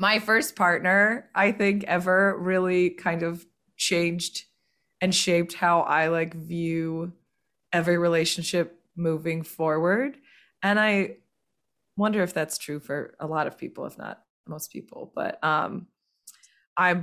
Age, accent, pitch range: 20-39, American, 165-195 Hz